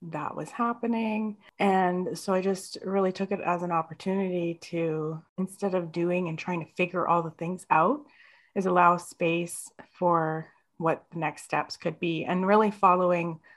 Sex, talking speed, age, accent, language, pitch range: female, 170 wpm, 30-49, American, English, 170-210 Hz